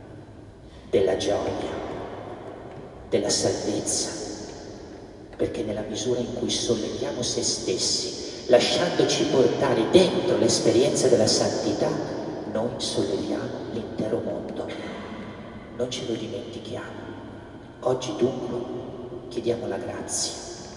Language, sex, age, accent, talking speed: Italian, male, 50-69, native, 90 wpm